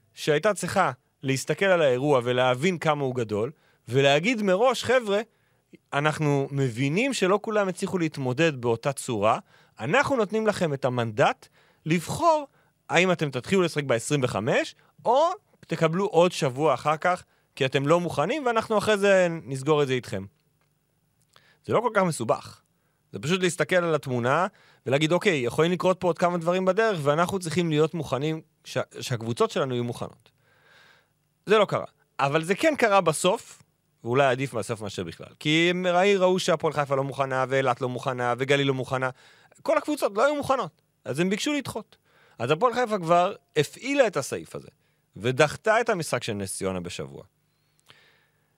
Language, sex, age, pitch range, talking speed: Hebrew, male, 30-49, 135-185 Hz, 155 wpm